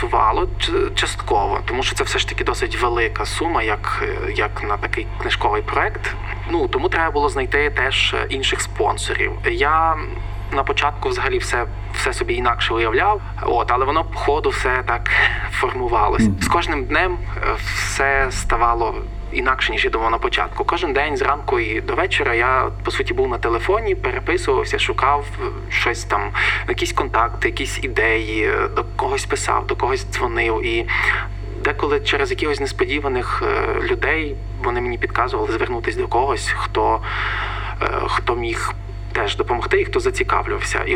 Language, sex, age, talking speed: Ukrainian, male, 20-39, 145 wpm